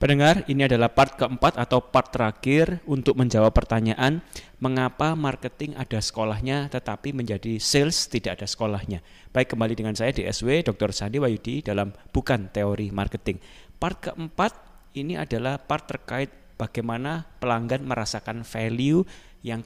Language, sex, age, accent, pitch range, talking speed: Indonesian, male, 20-39, native, 105-135 Hz, 135 wpm